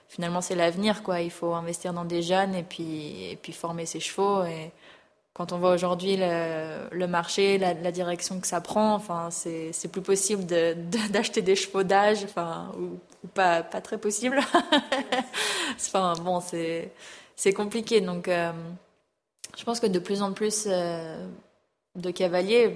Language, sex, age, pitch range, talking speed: French, female, 20-39, 170-200 Hz, 170 wpm